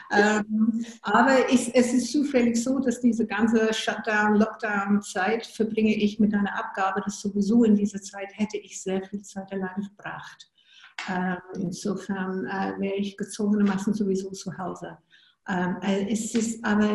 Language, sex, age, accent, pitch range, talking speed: German, female, 60-79, German, 195-225 Hz, 145 wpm